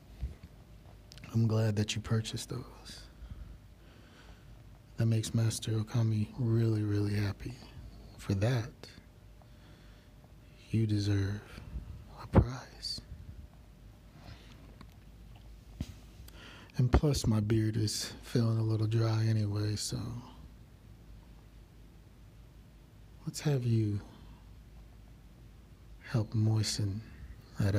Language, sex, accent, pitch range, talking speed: English, male, American, 100-115 Hz, 80 wpm